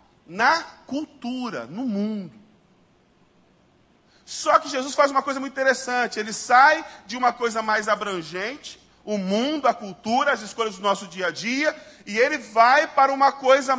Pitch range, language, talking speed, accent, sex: 215-285 Hz, Portuguese, 155 wpm, Brazilian, male